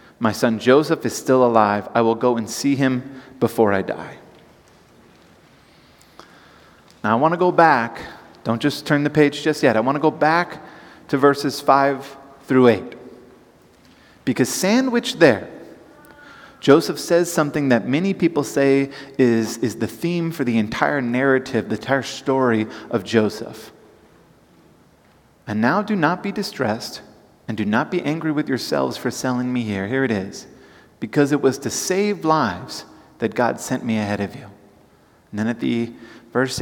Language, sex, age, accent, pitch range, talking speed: English, male, 30-49, American, 115-155 Hz, 160 wpm